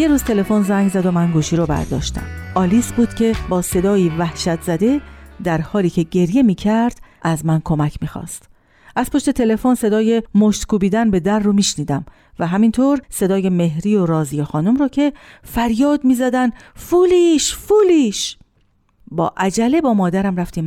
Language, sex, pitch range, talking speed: Persian, female, 160-235 Hz, 150 wpm